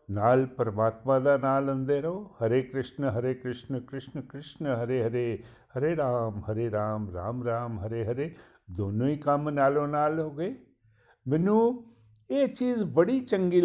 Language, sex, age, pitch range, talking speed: Punjabi, male, 60-79, 120-180 Hz, 130 wpm